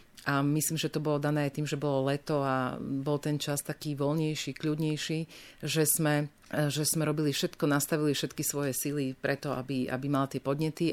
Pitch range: 135-150 Hz